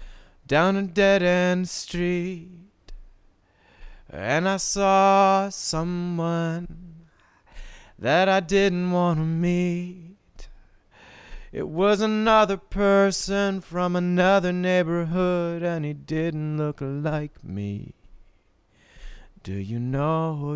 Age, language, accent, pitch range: 30-49, English, American, 135-180 Hz